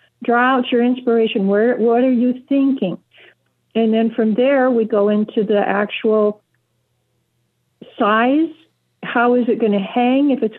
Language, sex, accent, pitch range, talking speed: English, female, American, 210-250 Hz, 145 wpm